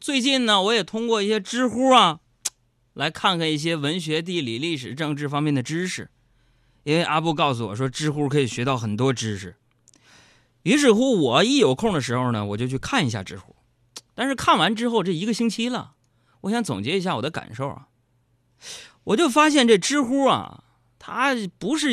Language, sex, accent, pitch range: Chinese, male, native, 120-200 Hz